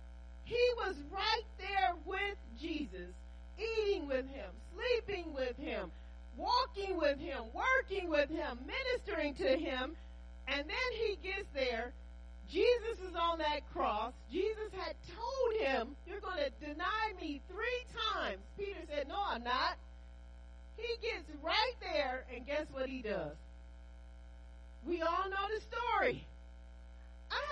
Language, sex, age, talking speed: English, female, 40-59, 135 wpm